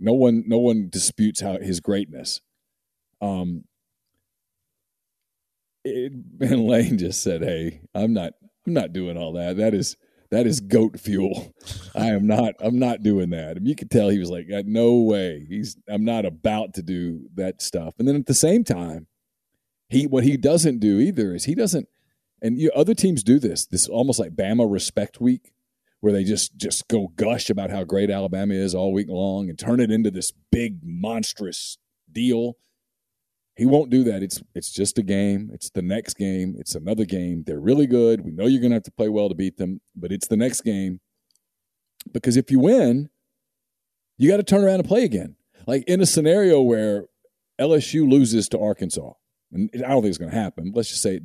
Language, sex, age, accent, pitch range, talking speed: English, male, 40-59, American, 95-125 Hz, 200 wpm